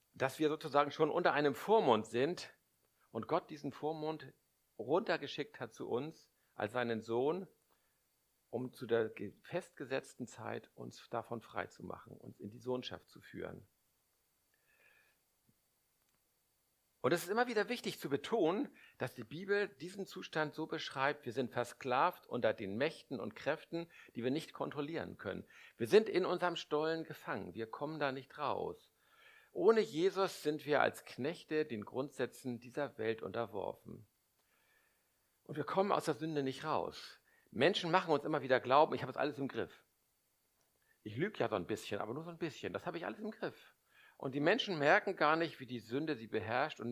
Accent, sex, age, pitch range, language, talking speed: German, male, 50-69, 125-185 Hz, German, 170 wpm